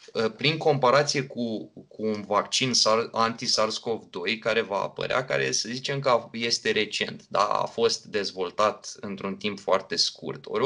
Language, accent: Romanian, native